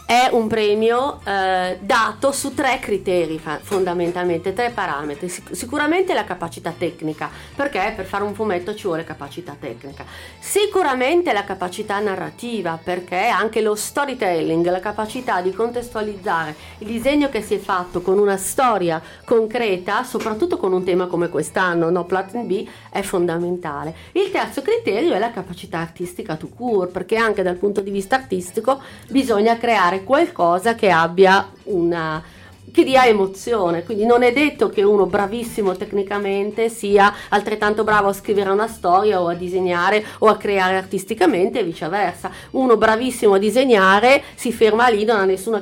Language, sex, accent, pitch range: Italian, female, native, 180-225 Hz